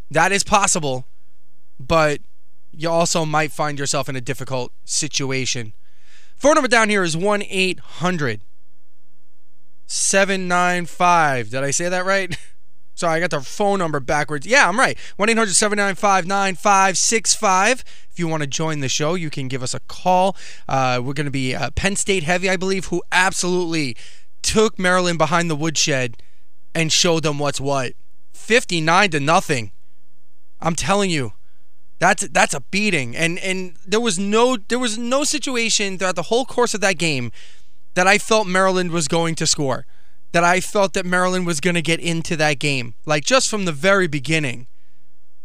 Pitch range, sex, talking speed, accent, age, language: 120-185 Hz, male, 160 wpm, American, 20-39, English